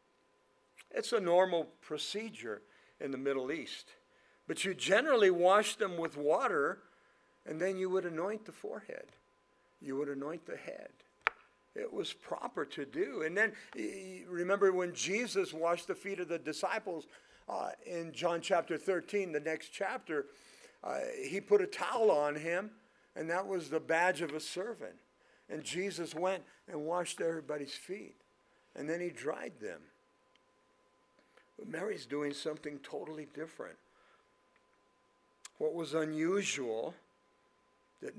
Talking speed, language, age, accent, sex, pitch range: 135 wpm, English, 50-69, American, male, 150-195 Hz